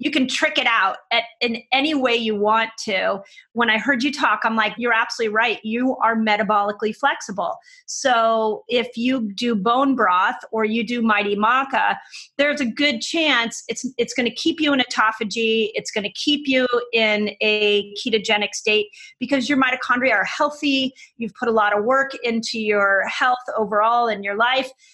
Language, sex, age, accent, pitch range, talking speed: English, female, 30-49, American, 210-265 Hz, 185 wpm